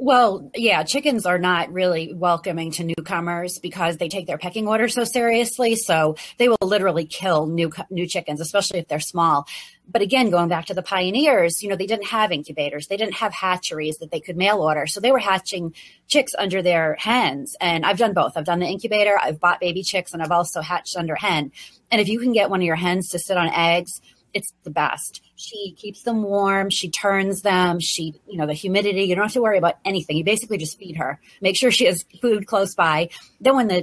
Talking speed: 225 wpm